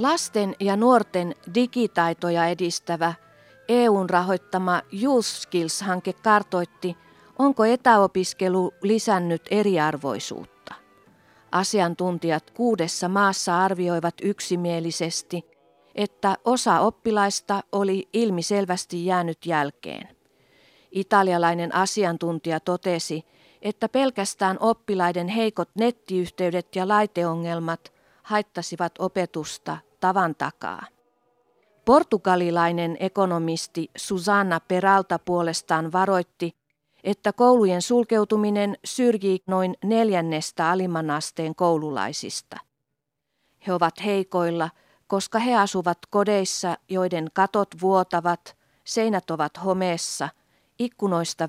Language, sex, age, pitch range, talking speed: Finnish, female, 50-69, 170-200 Hz, 80 wpm